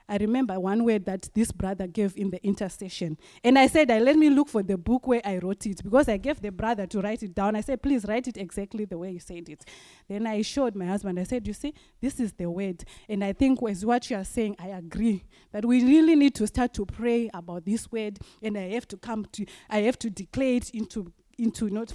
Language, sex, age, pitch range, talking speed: English, female, 20-39, 200-255 Hz, 255 wpm